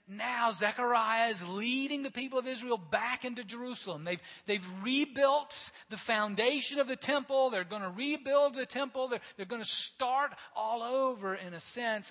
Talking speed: 175 wpm